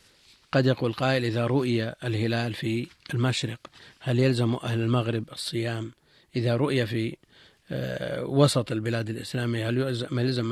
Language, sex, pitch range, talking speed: Arabic, male, 115-140 Hz, 120 wpm